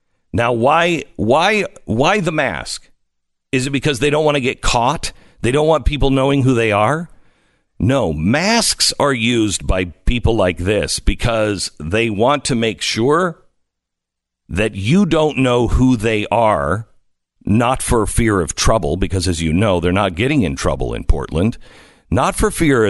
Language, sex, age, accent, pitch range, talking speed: English, male, 50-69, American, 95-150 Hz, 165 wpm